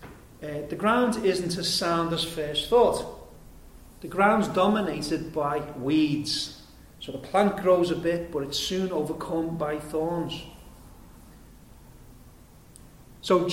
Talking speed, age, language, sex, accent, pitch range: 120 wpm, 40-59, English, male, British, 150-210 Hz